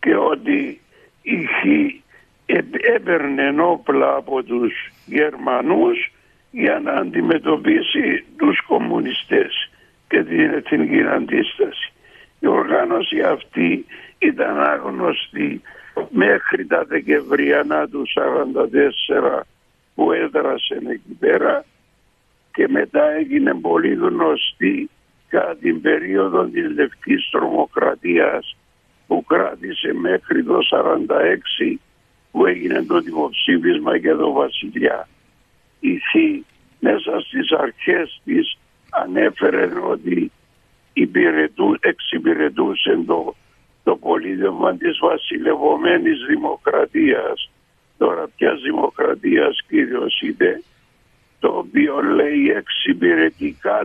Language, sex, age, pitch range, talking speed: Greek, male, 60-79, 295-430 Hz, 85 wpm